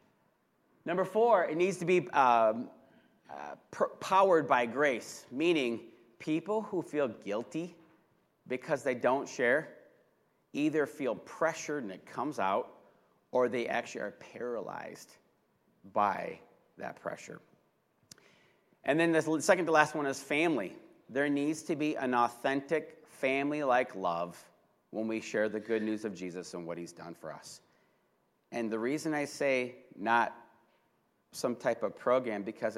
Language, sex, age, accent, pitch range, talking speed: English, male, 40-59, American, 115-165 Hz, 140 wpm